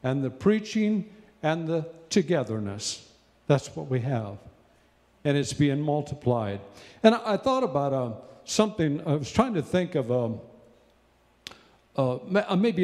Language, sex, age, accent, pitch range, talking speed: English, male, 50-69, American, 125-180 Hz, 125 wpm